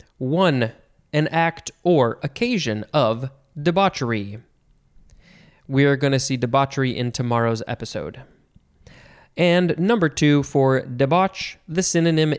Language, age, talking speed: English, 20-39, 110 wpm